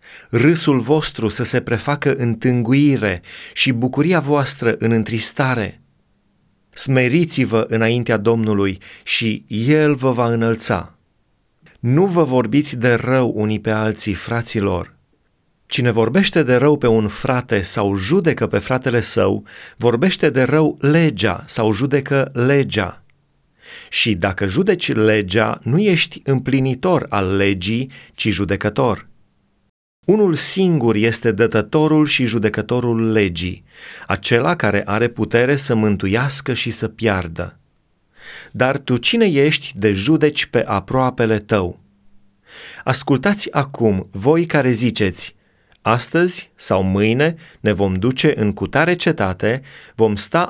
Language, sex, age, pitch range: Romanian, male, 30-49, 105-140 Hz